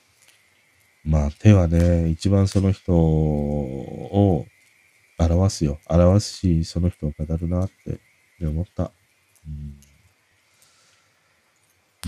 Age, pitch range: 40-59, 85-120 Hz